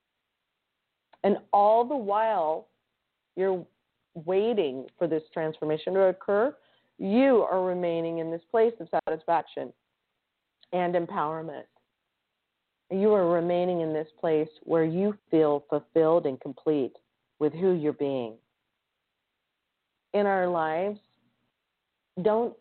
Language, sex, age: English, female, 40-59